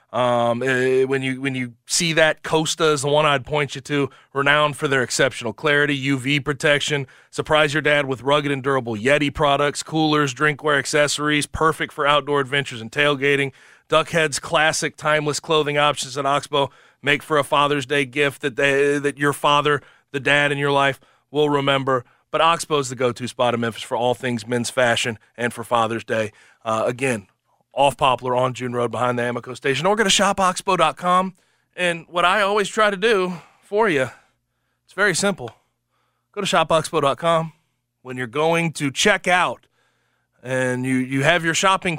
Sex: male